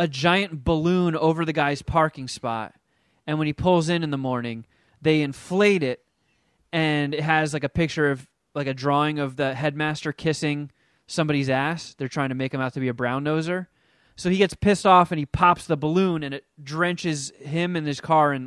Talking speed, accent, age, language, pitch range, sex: 210 wpm, American, 20-39, English, 145-185 Hz, male